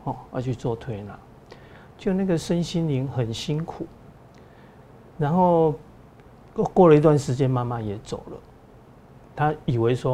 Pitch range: 125-160 Hz